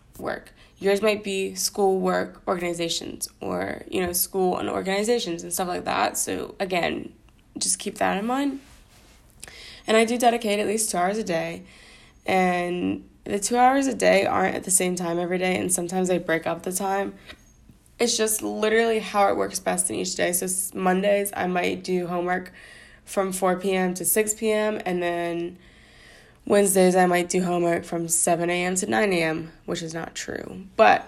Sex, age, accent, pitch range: female, 20-39, American, 175-210 Hz